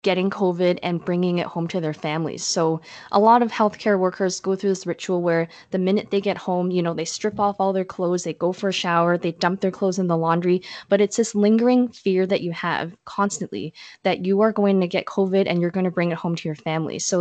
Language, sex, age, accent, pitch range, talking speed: English, female, 20-39, American, 170-195 Hz, 250 wpm